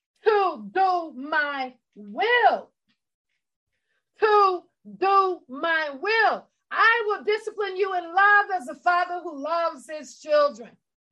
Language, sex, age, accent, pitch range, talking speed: English, female, 40-59, American, 315-395 Hz, 115 wpm